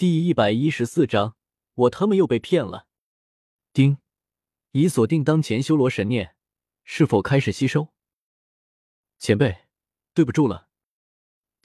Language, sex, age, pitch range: Chinese, male, 20-39, 105-155 Hz